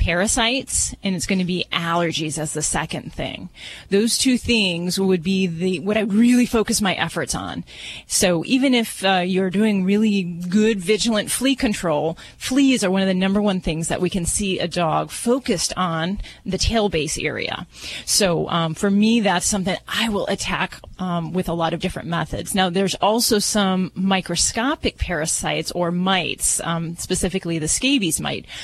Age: 30-49